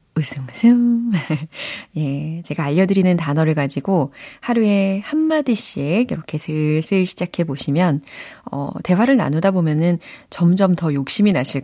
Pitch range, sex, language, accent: 145-195 Hz, female, Korean, native